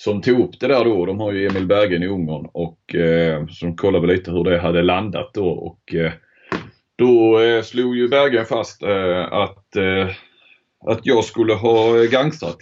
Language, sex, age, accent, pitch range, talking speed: Swedish, male, 30-49, native, 90-115 Hz, 190 wpm